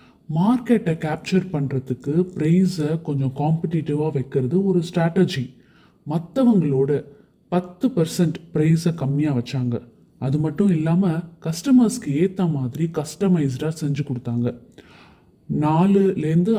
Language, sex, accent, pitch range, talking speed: Tamil, male, native, 145-185 Hz, 45 wpm